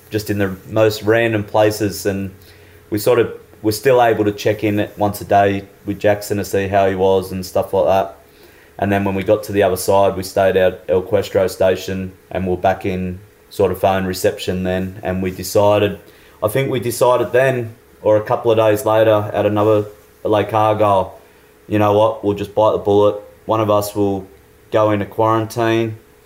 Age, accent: 20-39, Australian